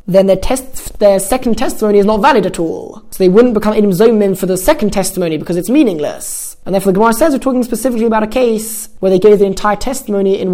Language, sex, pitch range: English, male, 180-220 Hz